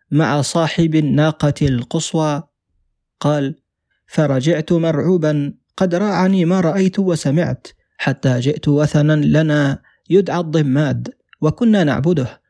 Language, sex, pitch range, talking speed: Arabic, male, 140-165 Hz, 95 wpm